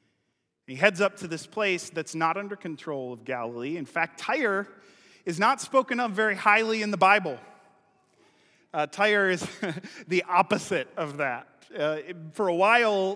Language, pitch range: English, 150-190 Hz